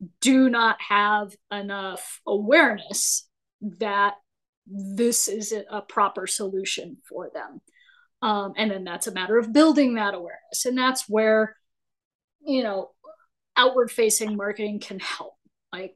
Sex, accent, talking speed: female, American, 130 wpm